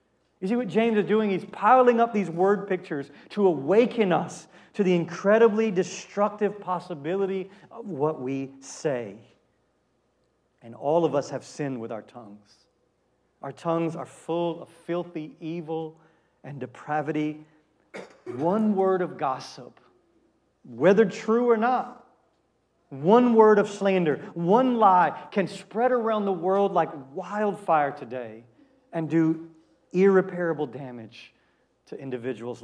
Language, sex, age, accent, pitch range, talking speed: English, male, 40-59, American, 135-190 Hz, 130 wpm